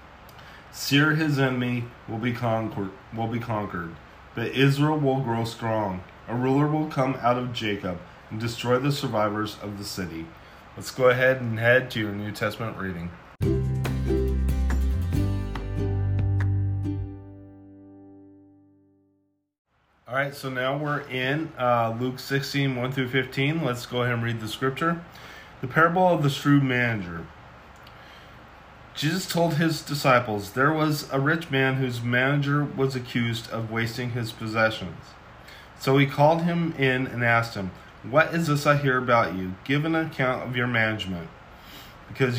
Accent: American